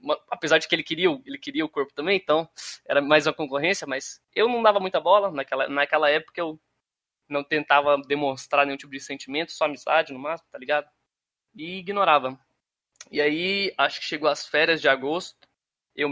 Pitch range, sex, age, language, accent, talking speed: 140-180 Hz, male, 20-39, Portuguese, Brazilian, 190 wpm